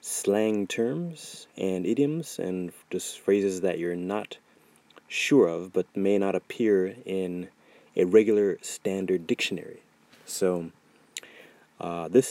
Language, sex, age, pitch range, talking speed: English, male, 30-49, 85-100 Hz, 115 wpm